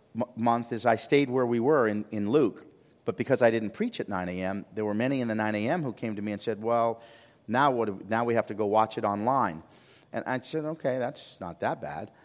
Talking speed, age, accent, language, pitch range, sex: 250 wpm, 40-59, American, English, 110-130 Hz, male